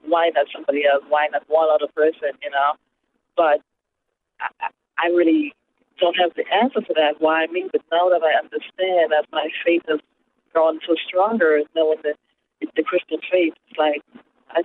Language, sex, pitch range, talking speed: English, female, 155-190 Hz, 185 wpm